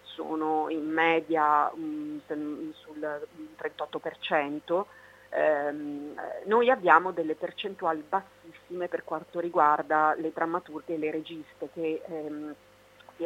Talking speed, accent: 90 wpm, native